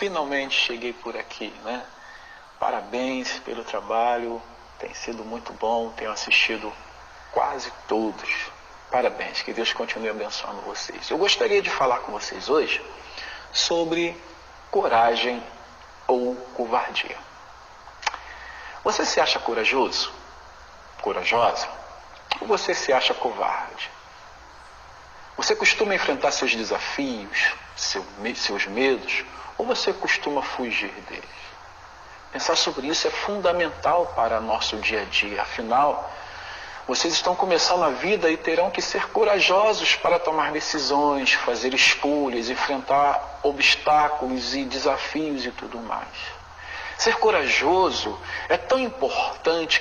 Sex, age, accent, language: male, 40-59, Brazilian, Portuguese